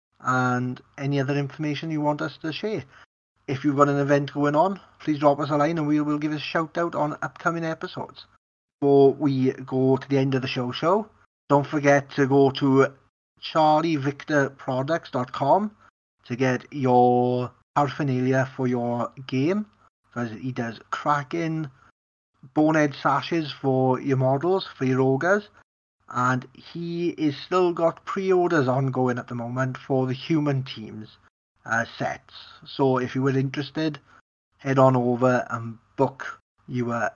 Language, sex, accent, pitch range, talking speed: English, male, British, 130-155 Hz, 150 wpm